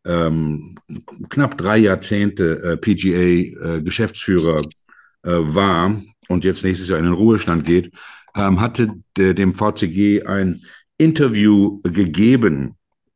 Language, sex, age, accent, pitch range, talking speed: German, male, 60-79, German, 95-120 Hz, 85 wpm